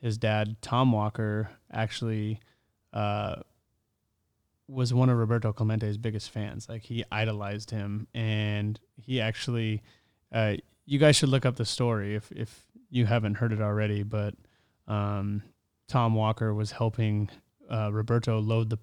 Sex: male